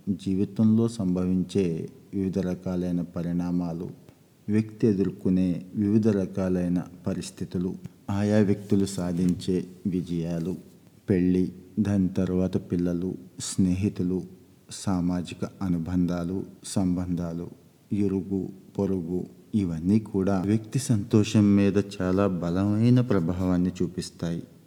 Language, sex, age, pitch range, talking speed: Telugu, male, 50-69, 90-105 Hz, 80 wpm